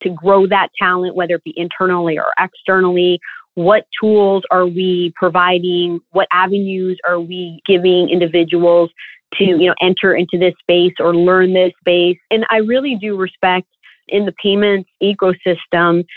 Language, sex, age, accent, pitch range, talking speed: English, female, 30-49, American, 175-195 Hz, 150 wpm